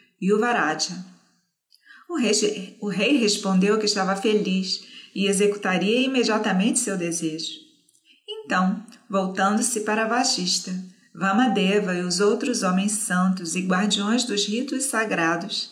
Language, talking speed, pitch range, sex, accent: Portuguese, 105 wpm, 190-245 Hz, female, Brazilian